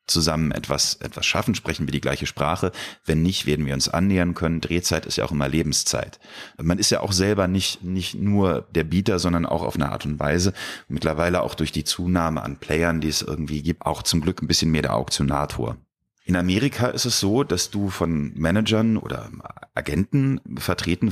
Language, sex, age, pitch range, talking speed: German, male, 30-49, 80-105 Hz, 200 wpm